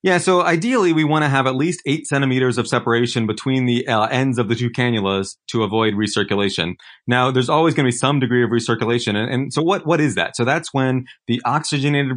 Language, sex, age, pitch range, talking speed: English, male, 30-49, 115-135 Hz, 225 wpm